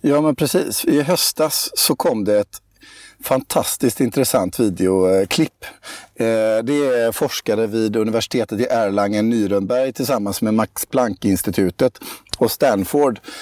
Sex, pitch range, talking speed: male, 105-125 Hz, 115 wpm